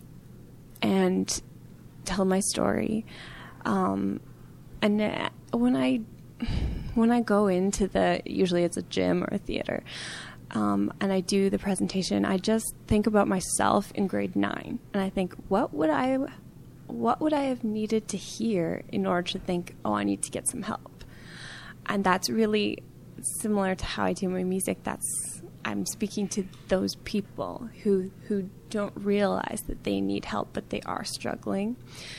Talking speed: 160 wpm